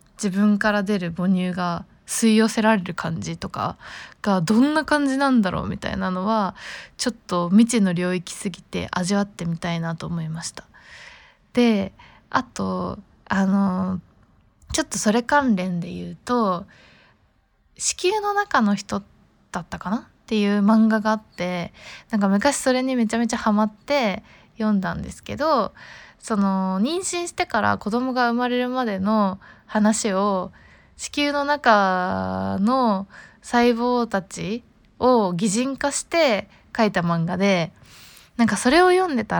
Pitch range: 185-245 Hz